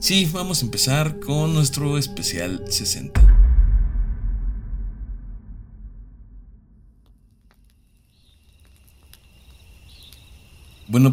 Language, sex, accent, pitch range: Spanish, male, Mexican, 85-120 Hz